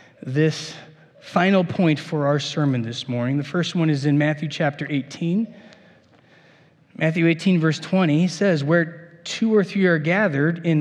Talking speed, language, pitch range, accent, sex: 155 wpm, English, 140-180 Hz, American, male